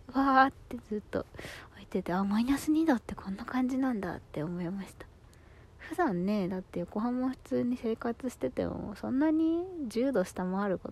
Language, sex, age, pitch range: Japanese, female, 20-39, 185-255 Hz